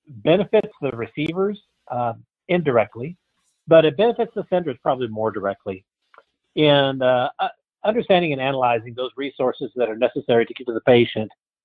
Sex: male